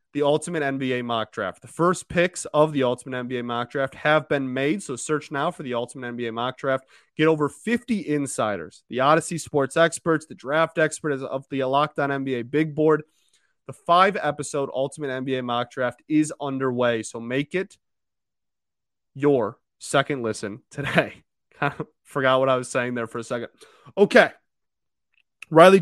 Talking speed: 165 wpm